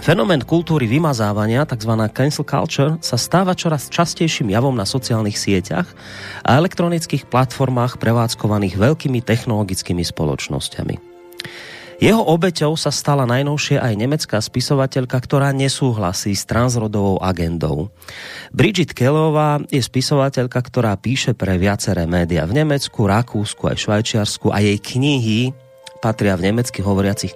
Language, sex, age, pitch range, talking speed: Slovak, male, 30-49, 105-145 Hz, 120 wpm